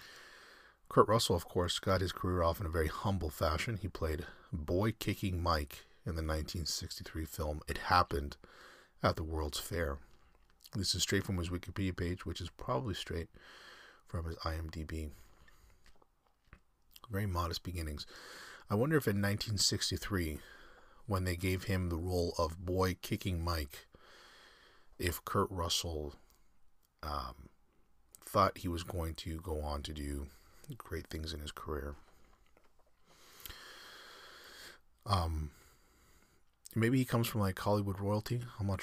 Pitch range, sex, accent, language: 80-95 Hz, male, American, English